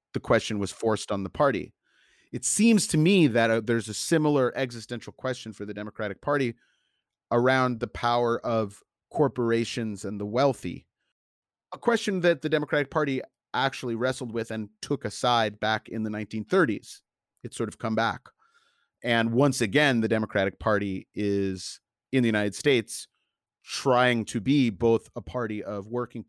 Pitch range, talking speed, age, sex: 105-125 Hz, 160 wpm, 30-49, male